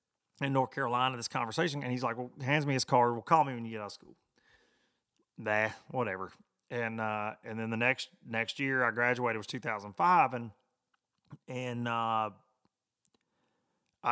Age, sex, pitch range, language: 30-49, male, 115-140 Hz, English